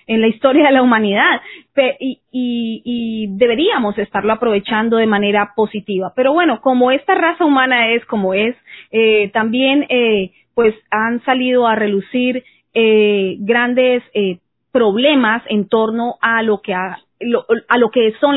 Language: Spanish